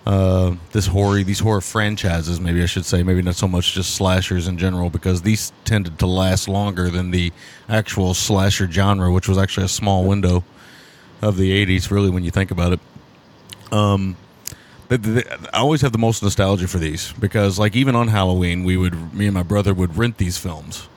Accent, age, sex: American, 30-49, male